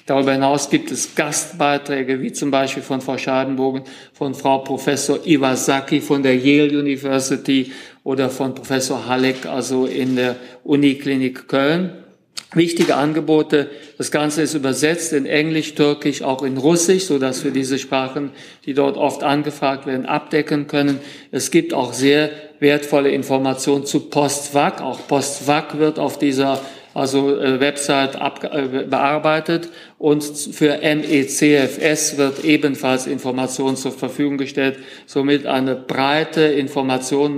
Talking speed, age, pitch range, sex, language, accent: 130 wpm, 50-69, 135-150 Hz, male, German, German